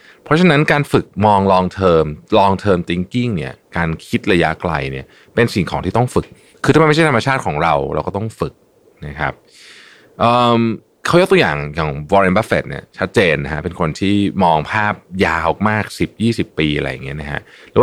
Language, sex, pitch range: Thai, male, 80-130 Hz